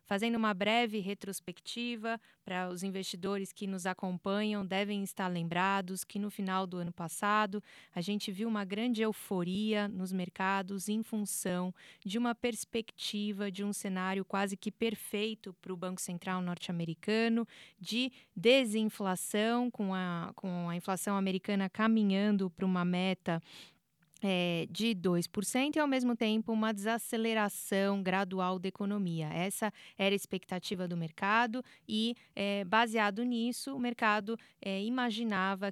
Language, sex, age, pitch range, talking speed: Portuguese, female, 20-39, 190-220 Hz, 135 wpm